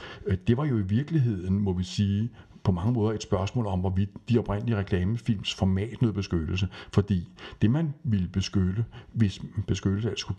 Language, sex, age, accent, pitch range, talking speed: Danish, male, 60-79, native, 100-125 Hz, 170 wpm